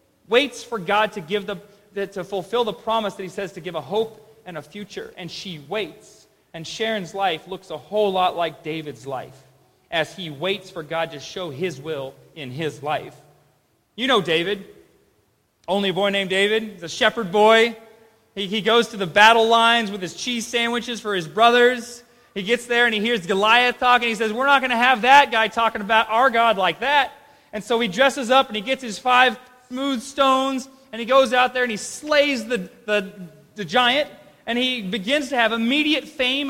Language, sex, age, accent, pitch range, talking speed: English, male, 30-49, American, 205-250 Hz, 205 wpm